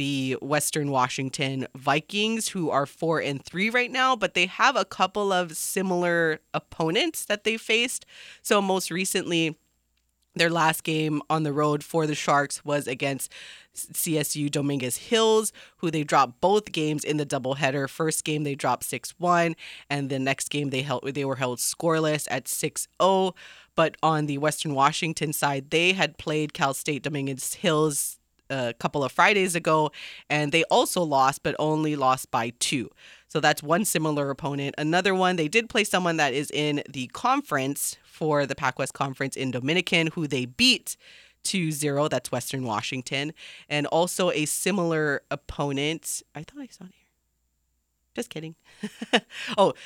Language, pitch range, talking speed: English, 140-175 Hz, 160 wpm